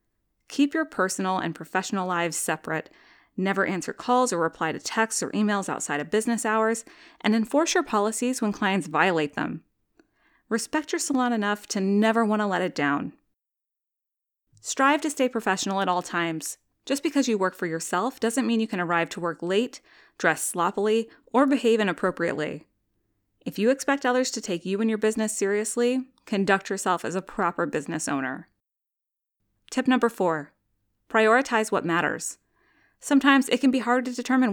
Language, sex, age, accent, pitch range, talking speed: English, female, 20-39, American, 180-245 Hz, 165 wpm